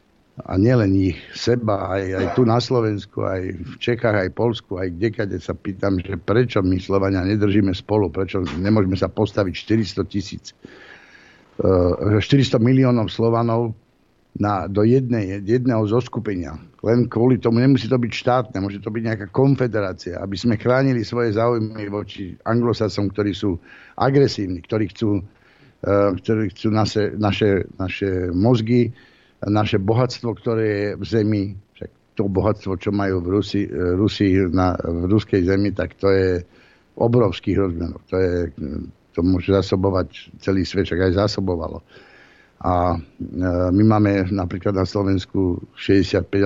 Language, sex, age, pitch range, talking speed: Slovak, male, 60-79, 95-115 Hz, 140 wpm